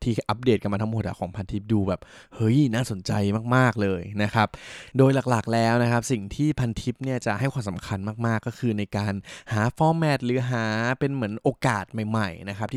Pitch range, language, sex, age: 105-130 Hz, Thai, male, 20-39